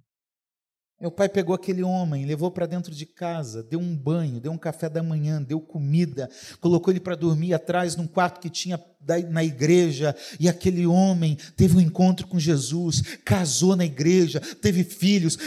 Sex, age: male, 40-59